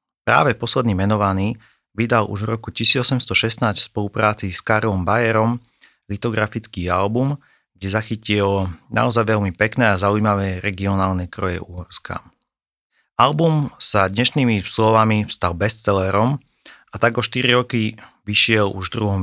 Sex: male